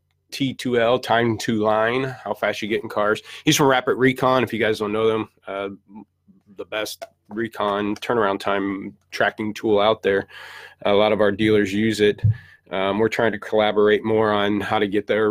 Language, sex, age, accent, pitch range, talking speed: English, male, 30-49, American, 105-125 Hz, 190 wpm